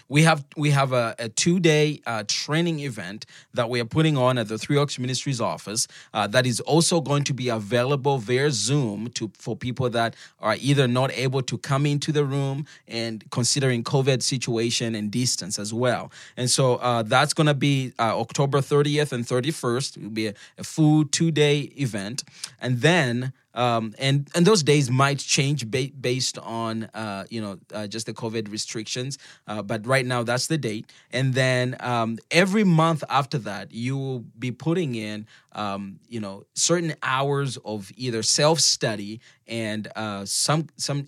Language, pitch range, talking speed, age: English, 115-145 Hz, 180 wpm, 20-39